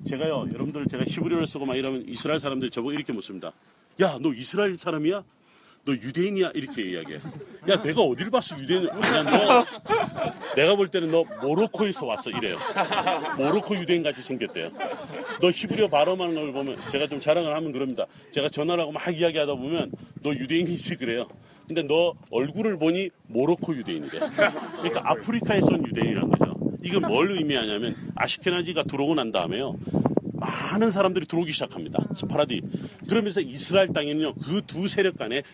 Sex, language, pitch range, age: male, Korean, 150-195 Hz, 40-59